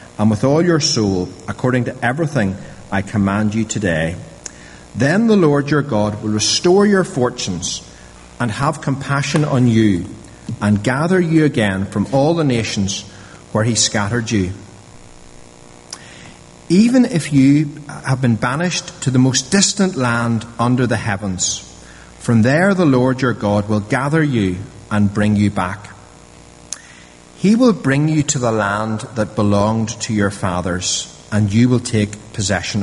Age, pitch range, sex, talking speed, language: 40-59, 95-135 Hz, male, 150 wpm, English